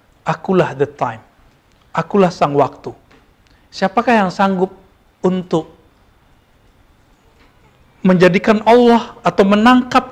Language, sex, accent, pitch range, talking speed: Indonesian, male, native, 145-205 Hz, 85 wpm